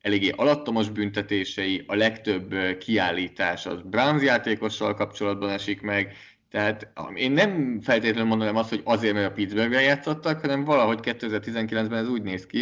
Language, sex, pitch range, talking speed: Hungarian, male, 100-110 Hz, 150 wpm